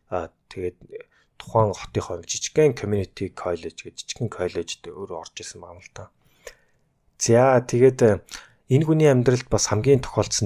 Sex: male